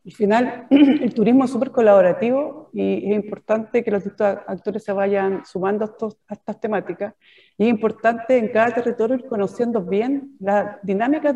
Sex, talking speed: female, 170 wpm